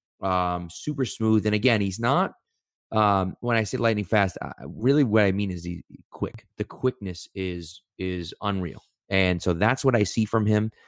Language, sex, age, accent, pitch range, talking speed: English, male, 30-49, American, 95-110 Hz, 190 wpm